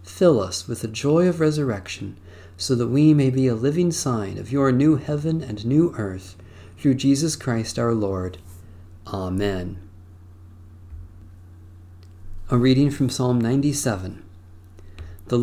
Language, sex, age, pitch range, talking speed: English, male, 40-59, 95-135 Hz, 130 wpm